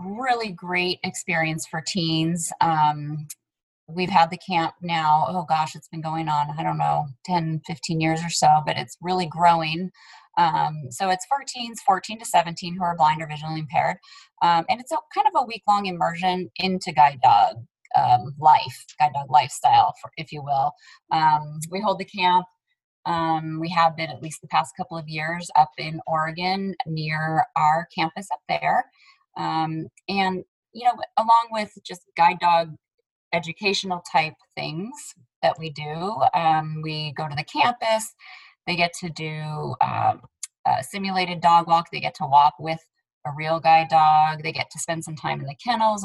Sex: female